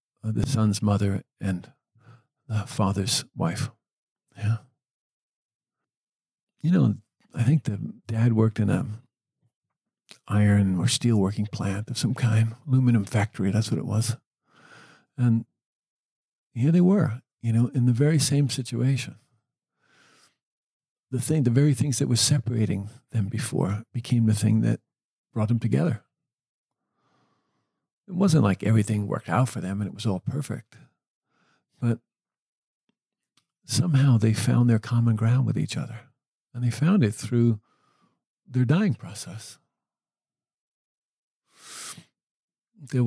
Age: 50-69